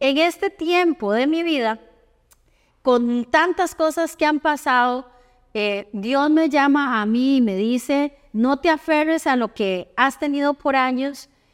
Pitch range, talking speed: 235-290 Hz, 160 wpm